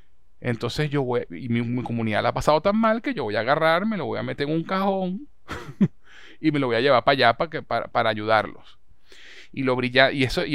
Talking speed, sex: 250 wpm, male